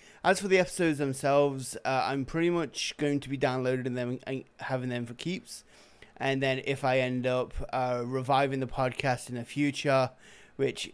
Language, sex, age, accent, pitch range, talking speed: English, male, 20-39, British, 125-140 Hz, 180 wpm